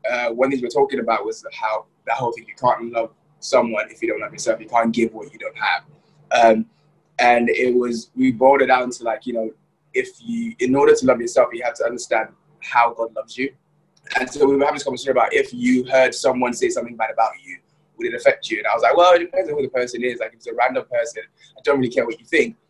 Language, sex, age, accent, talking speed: English, male, 20-39, British, 265 wpm